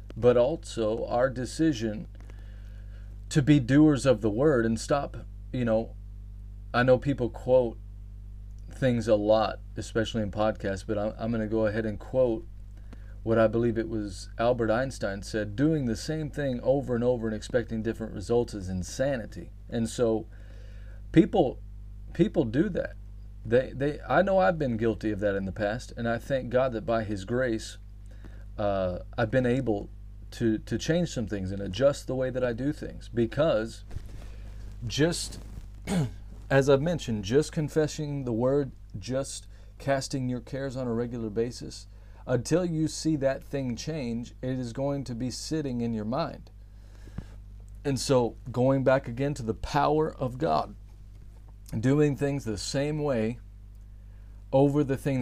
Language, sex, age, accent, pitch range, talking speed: English, male, 40-59, American, 100-130 Hz, 160 wpm